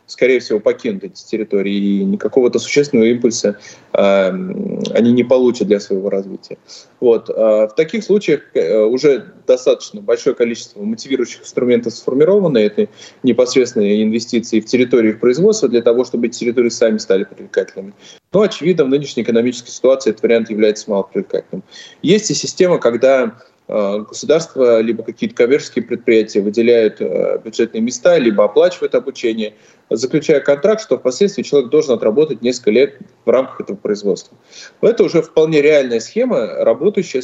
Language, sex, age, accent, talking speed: Russian, male, 20-39, native, 145 wpm